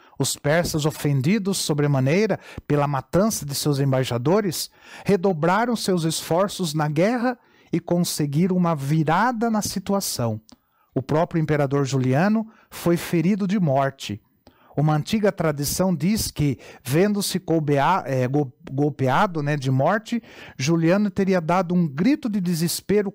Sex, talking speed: male, 115 wpm